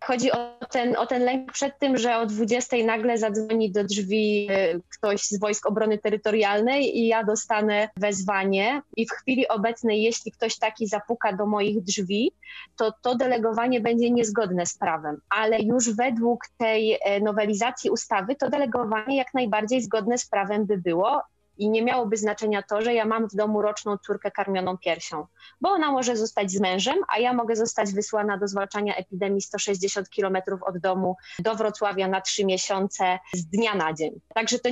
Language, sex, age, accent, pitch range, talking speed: Polish, female, 20-39, native, 200-230 Hz, 175 wpm